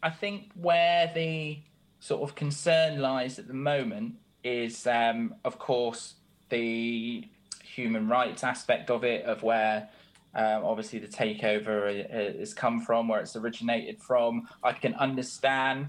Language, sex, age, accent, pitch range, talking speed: English, male, 20-39, British, 115-150 Hz, 140 wpm